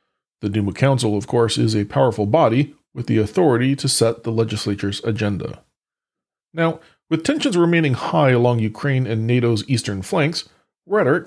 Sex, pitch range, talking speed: male, 115-160 Hz, 155 wpm